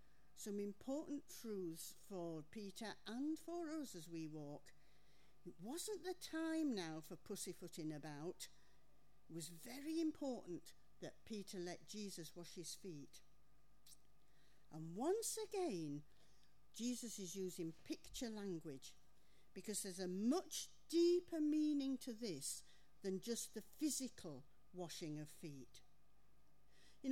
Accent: British